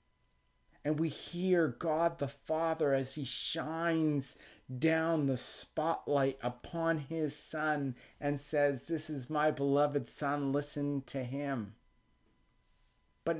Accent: American